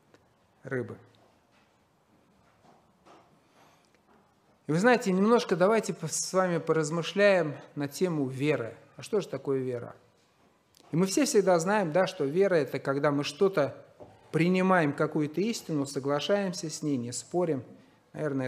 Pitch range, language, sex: 145-200 Hz, Russian, male